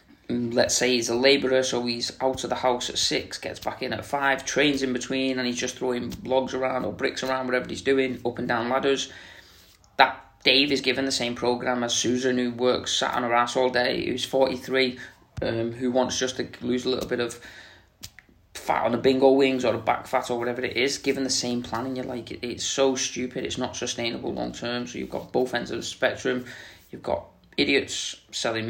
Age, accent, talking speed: 20-39, British, 220 wpm